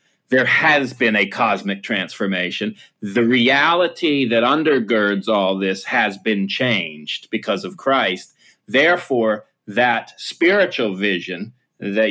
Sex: male